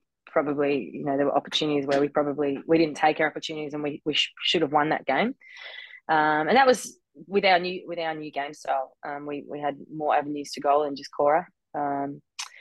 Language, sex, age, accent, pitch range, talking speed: English, female, 20-39, Australian, 140-160 Hz, 225 wpm